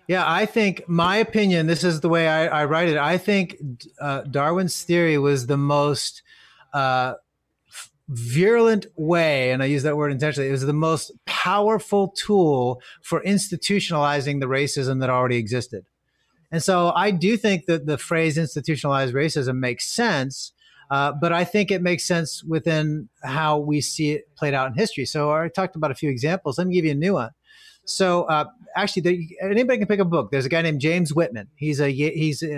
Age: 30-49